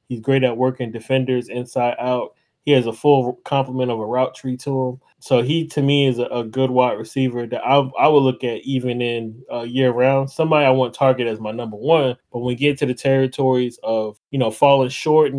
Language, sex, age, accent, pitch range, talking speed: English, male, 20-39, American, 120-140 Hz, 225 wpm